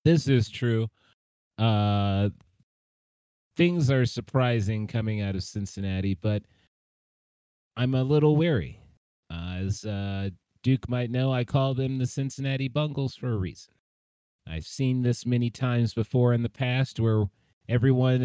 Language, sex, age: English, male, 30-49